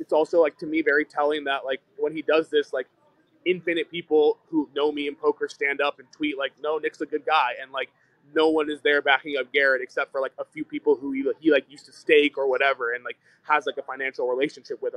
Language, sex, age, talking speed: English, male, 20-39, 255 wpm